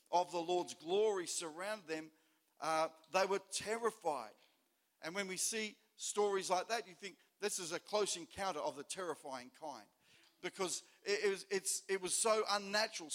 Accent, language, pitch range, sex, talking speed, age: Australian, English, 175-225 Hz, male, 155 wpm, 50-69